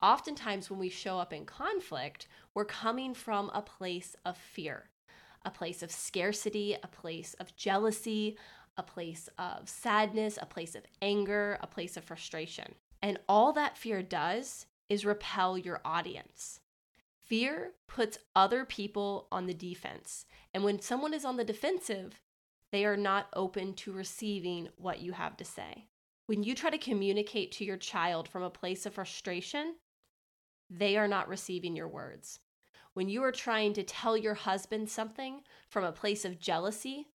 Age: 20-39